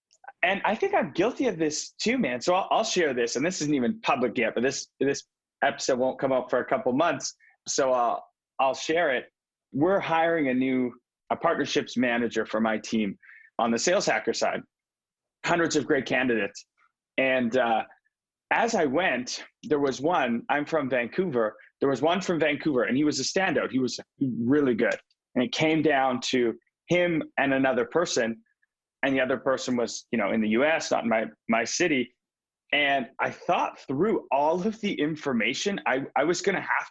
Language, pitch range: English, 125-175 Hz